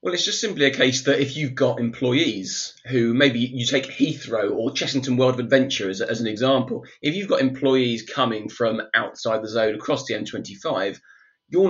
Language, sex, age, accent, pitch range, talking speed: English, male, 20-39, British, 115-140 Hz, 195 wpm